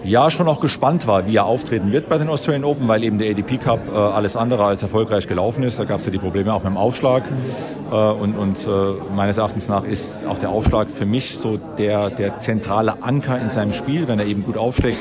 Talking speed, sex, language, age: 240 wpm, male, German, 40-59